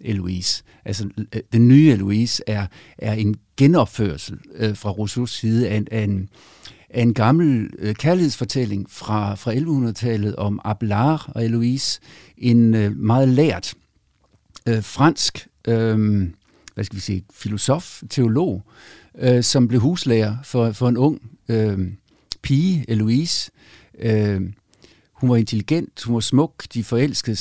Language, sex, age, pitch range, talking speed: Danish, male, 50-69, 105-125 Hz, 135 wpm